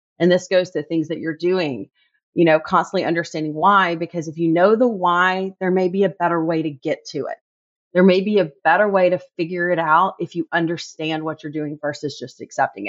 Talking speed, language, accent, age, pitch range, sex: 225 wpm, English, American, 30-49, 160-190 Hz, female